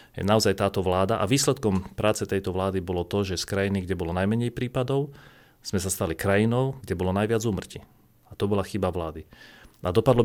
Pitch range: 95-120 Hz